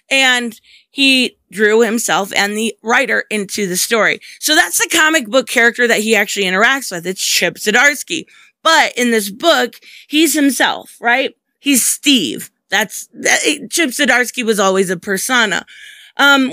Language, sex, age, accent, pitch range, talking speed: English, female, 20-39, American, 215-275 Hz, 155 wpm